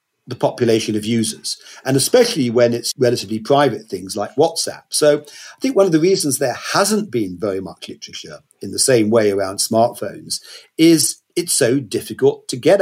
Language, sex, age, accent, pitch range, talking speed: English, male, 50-69, British, 115-155 Hz, 180 wpm